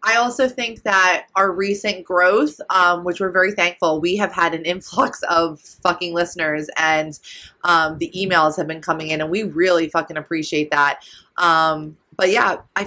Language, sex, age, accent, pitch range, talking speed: English, female, 20-39, American, 165-205 Hz, 175 wpm